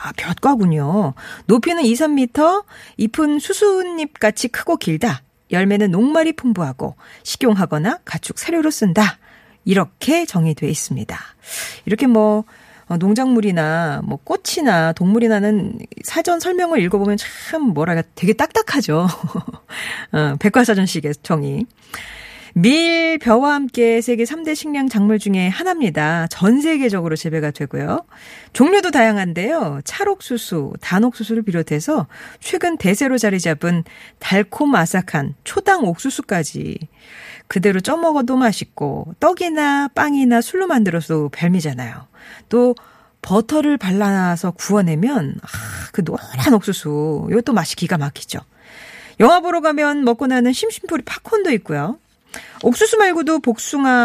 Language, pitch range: Korean, 180-290 Hz